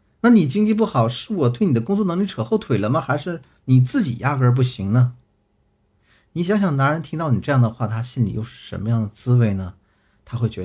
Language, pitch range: Chinese, 110-145 Hz